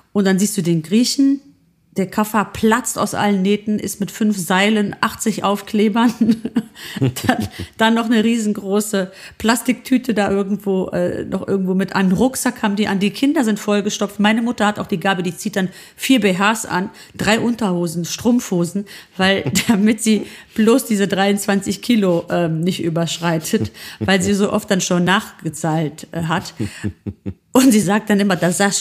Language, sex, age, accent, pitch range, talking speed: German, female, 40-59, German, 185-230 Hz, 165 wpm